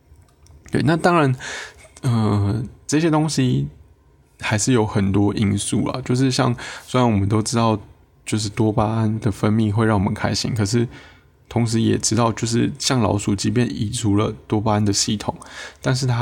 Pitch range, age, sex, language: 105-130 Hz, 20-39, male, Chinese